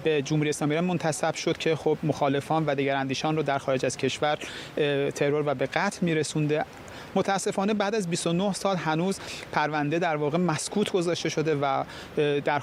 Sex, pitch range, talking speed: male, 150-170 Hz, 165 wpm